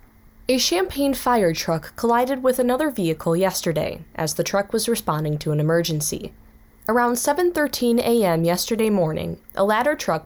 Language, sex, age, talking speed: English, female, 10-29, 145 wpm